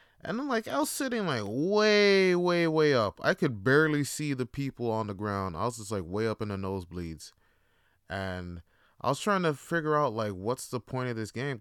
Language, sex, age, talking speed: English, male, 20-39, 220 wpm